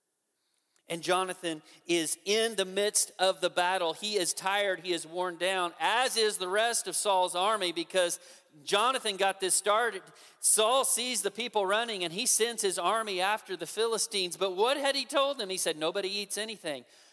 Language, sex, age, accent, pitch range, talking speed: English, male, 40-59, American, 145-205 Hz, 180 wpm